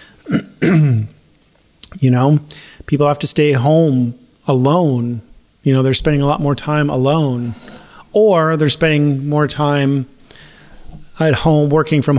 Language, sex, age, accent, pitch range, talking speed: English, male, 30-49, American, 130-150 Hz, 130 wpm